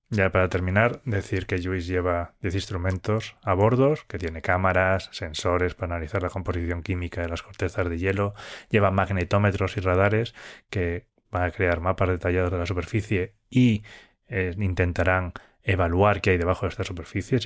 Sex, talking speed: male, 165 wpm